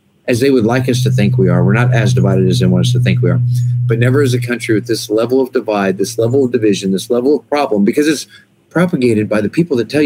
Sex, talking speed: male, 280 wpm